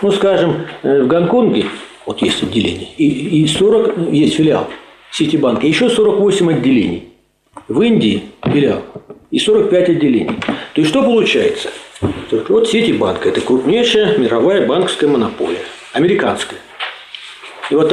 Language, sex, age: Russian, male, 50-69